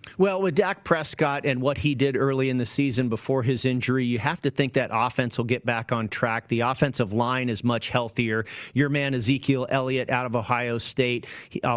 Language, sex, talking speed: English, male, 210 wpm